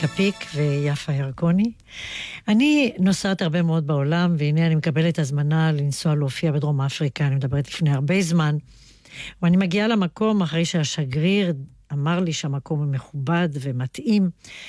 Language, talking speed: Hebrew, 130 wpm